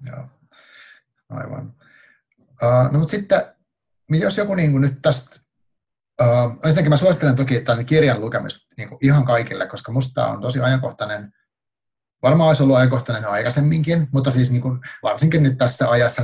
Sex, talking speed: male, 155 wpm